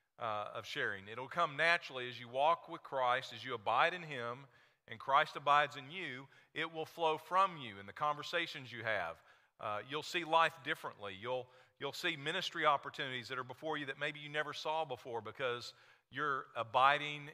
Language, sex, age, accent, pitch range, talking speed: English, male, 40-59, American, 130-165 Hz, 190 wpm